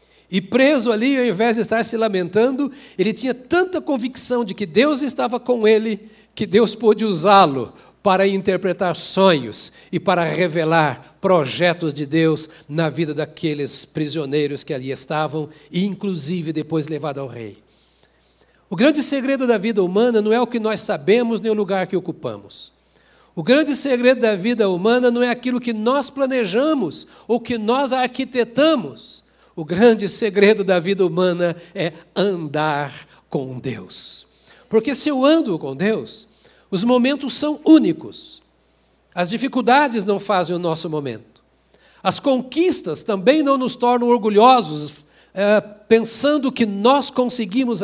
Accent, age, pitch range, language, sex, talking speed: Brazilian, 60-79, 170-245 Hz, Portuguese, male, 145 wpm